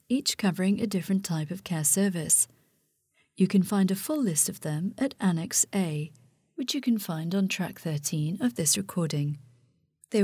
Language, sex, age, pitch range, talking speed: English, female, 40-59, 165-215 Hz, 175 wpm